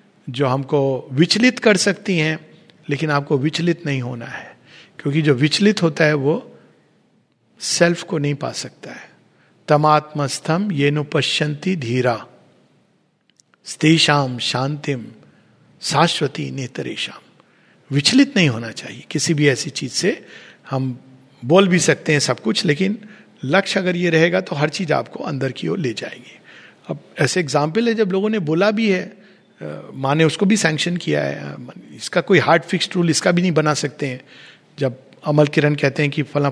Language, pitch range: Hindi, 145-185 Hz